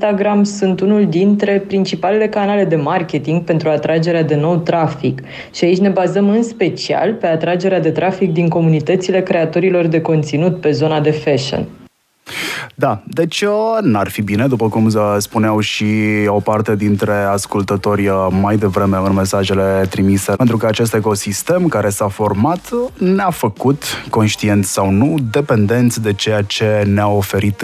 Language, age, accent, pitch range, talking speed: Romanian, 20-39, native, 100-145 Hz, 150 wpm